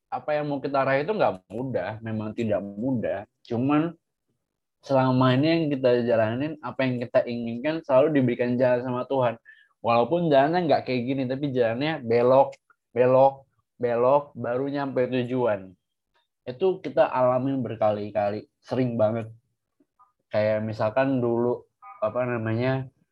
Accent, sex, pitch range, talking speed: native, male, 110-135 Hz, 130 wpm